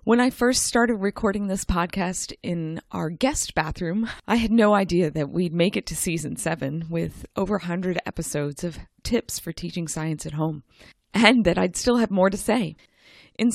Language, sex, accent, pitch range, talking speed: English, female, American, 165-215 Hz, 190 wpm